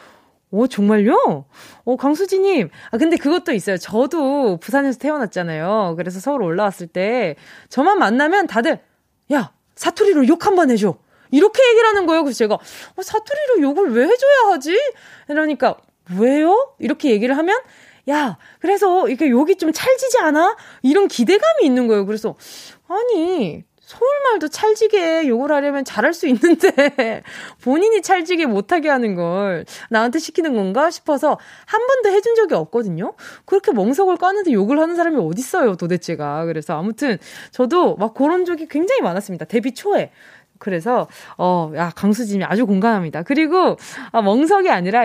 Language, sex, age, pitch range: Korean, female, 20-39, 210-340 Hz